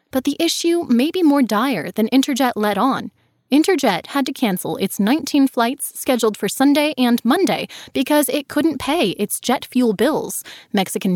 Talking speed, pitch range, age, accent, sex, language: 170 wpm, 220-290 Hz, 20-39, American, female, English